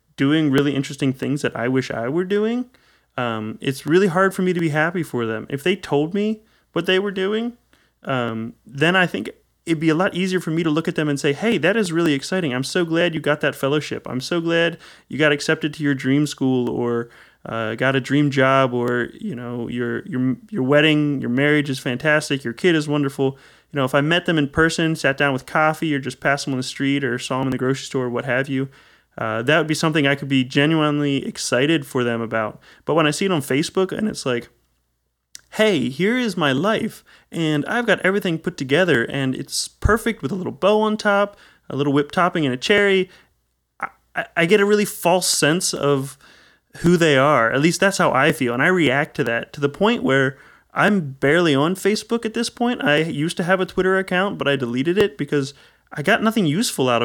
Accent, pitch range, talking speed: American, 135-180 Hz, 230 wpm